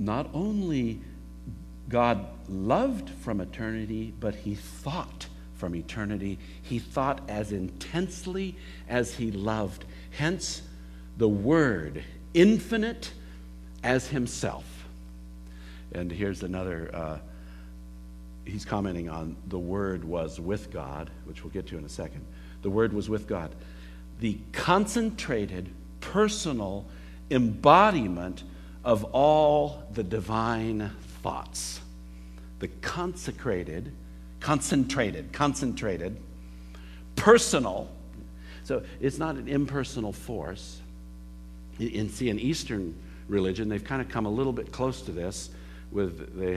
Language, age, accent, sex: English, 60-79, American, male